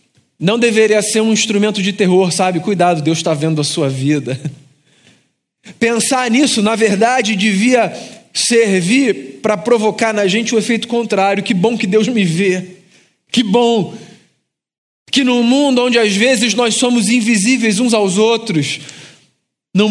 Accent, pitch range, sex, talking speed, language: Brazilian, 205-245 Hz, male, 150 wpm, Portuguese